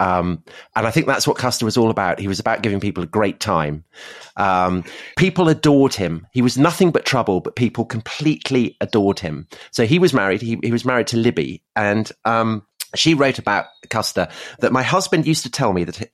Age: 30-49